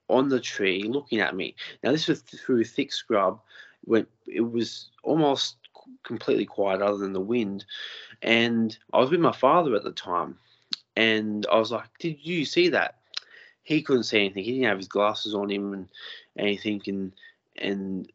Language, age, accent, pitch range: English, 20-39, Australian, 105-145 Hz